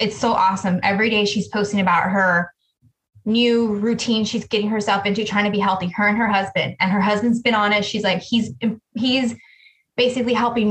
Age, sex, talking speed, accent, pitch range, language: 20-39, female, 195 wpm, American, 205-240 Hz, English